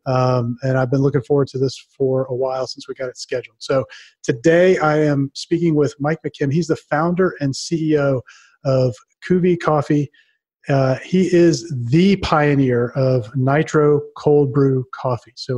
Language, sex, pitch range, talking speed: English, male, 130-150 Hz, 165 wpm